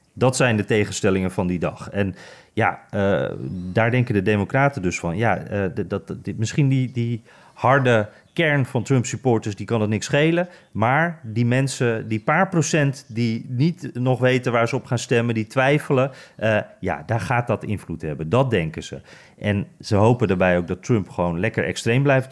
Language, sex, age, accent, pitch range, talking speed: Dutch, male, 30-49, Dutch, 105-135 Hz, 195 wpm